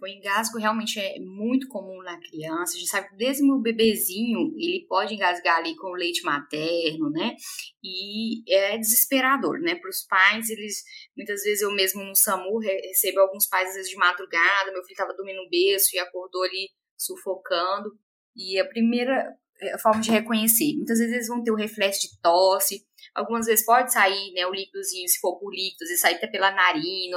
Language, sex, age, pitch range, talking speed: Portuguese, female, 10-29, 185-230 Hz, 200 wpm